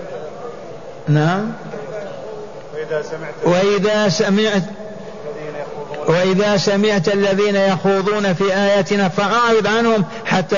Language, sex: Arabic, male